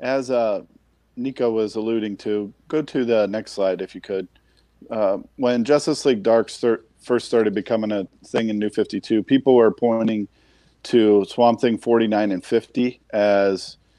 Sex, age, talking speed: male, 40-59, 160 wpm